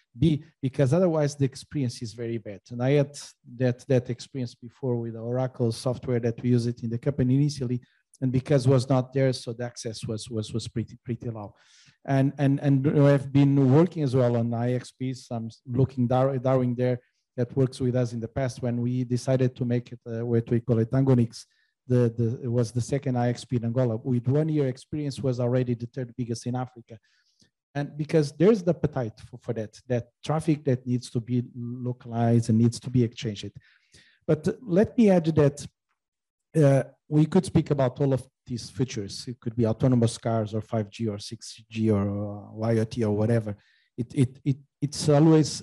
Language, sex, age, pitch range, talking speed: English, male, 40-59, 120-135 Hz, 195 wpm